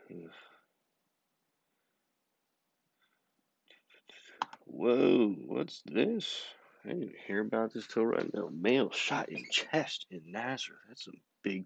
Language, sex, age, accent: English, male, 40-59, American